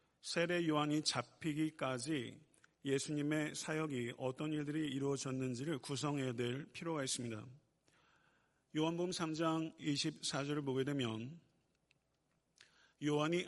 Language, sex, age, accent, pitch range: Korean, male, 50-69, native, 135-160 Hz